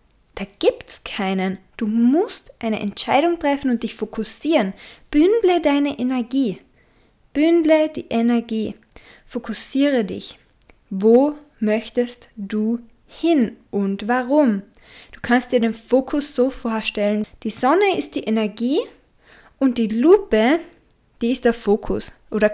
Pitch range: 215-280 Hz